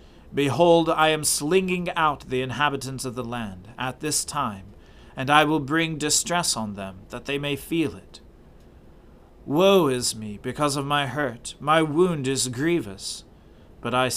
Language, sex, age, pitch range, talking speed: English, male, 40-59, 110-150 Hz, 160 wpm